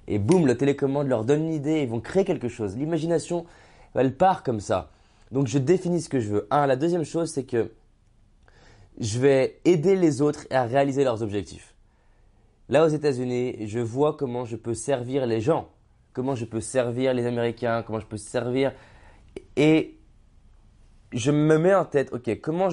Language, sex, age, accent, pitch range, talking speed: French, male, 20-39, French, 110-140 Hz, 180 wpm